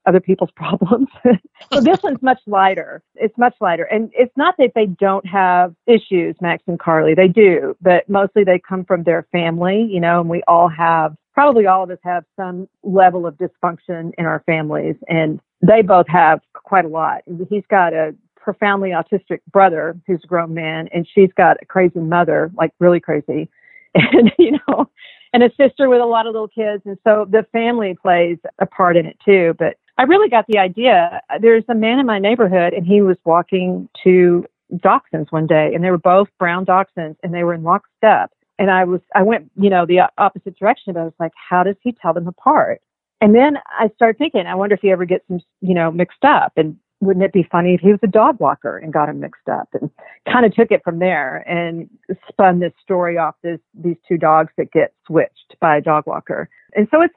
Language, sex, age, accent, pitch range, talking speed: English, female, 50-69, American, 170-215 Hz, 215 wpm